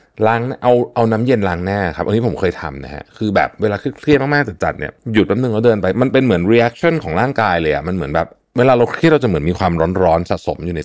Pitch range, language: 85-115 Hz, Thai